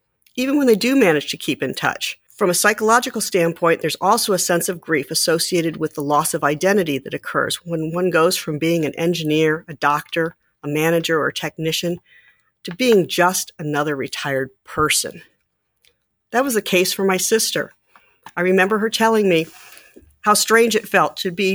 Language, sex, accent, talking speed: English, female, American, 180 wpm